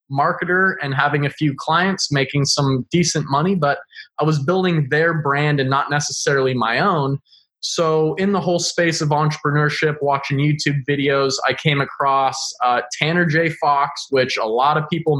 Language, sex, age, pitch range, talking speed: English, male, 20-39, 135-165 Hz, 170 wpm